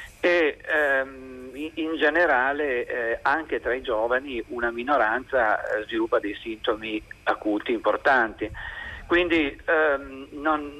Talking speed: 105 wpm